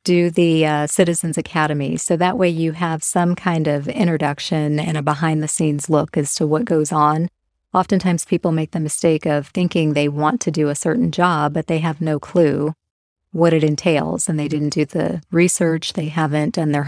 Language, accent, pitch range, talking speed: English, American, 150-175 Hz, 195 wpm